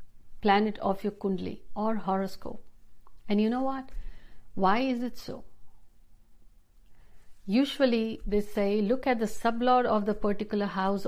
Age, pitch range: 60-79, 195-240 Hz